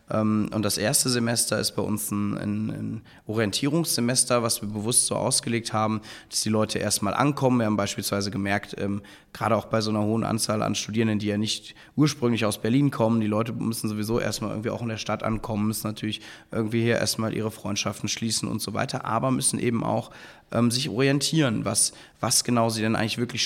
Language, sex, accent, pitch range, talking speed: English, male, German, 105-120 Hz, 200 wpm